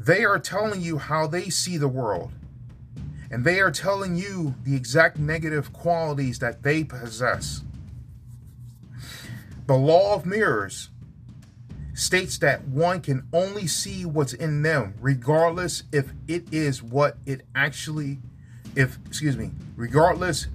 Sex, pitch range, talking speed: male, 120-160 Hz, 130 wpm